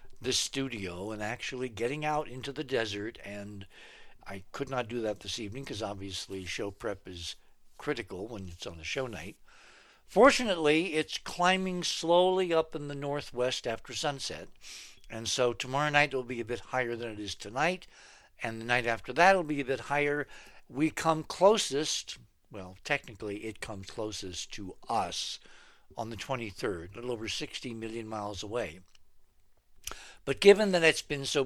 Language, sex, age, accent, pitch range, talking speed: English, male, 60-79, American, 105-150 Hz, 170 wpm